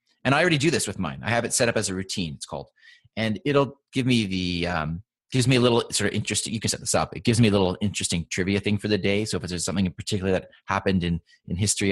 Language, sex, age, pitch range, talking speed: English, male, 30-49, 95-120 Hz, 285 wpm